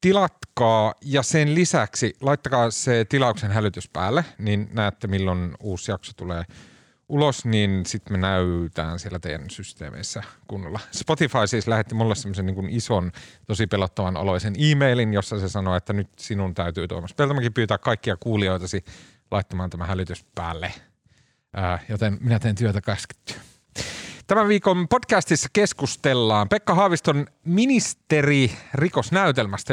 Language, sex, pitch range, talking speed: Finnish, male, 105-150 Hz, 135 wpm